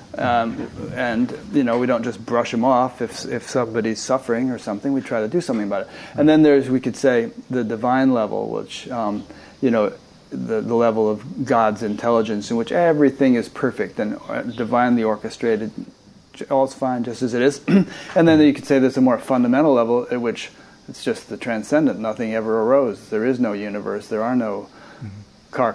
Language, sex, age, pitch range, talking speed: English, male, 30-49, 115-135 Hz, 195 wpm